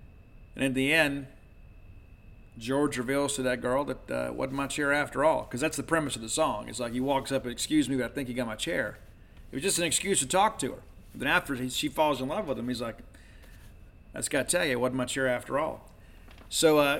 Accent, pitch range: American, 110-150 Hz